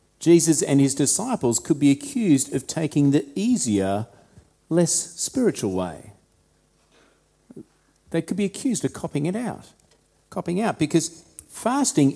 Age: 40-59